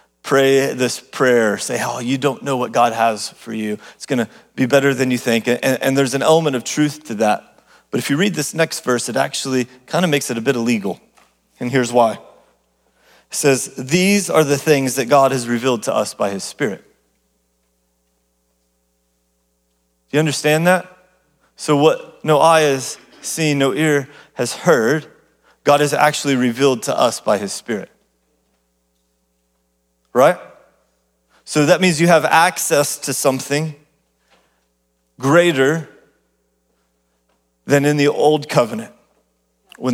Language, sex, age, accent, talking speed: English, male, 30-49, American, 155 wpm